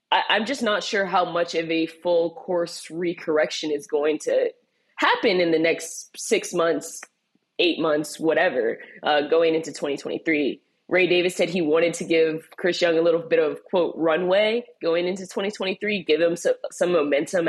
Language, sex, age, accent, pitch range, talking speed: English, female, 20-39, American, 165-245 Hz, 170 wpm